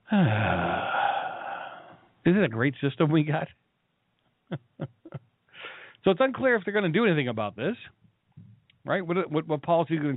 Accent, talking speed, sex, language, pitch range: American, 150 wpm, male, English, 130-190 Hz